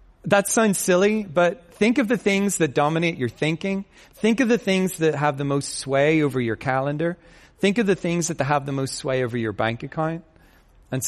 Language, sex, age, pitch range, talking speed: English, male, 40-59, 120-165 Hz, 205 wpm